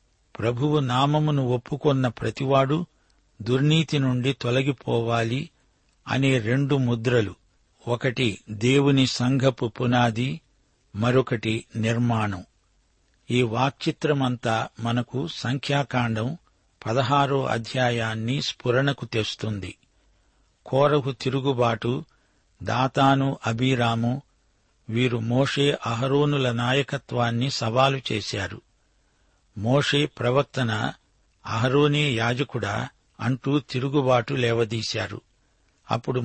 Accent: native